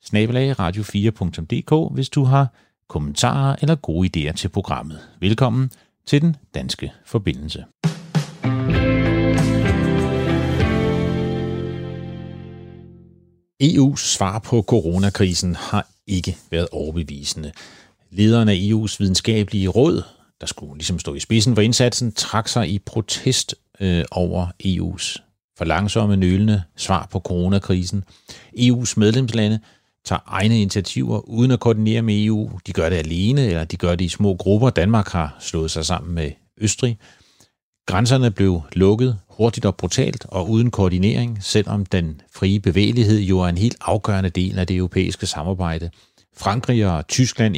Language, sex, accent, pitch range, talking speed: Danish, male, native, 90-115 Hz, 130 wpm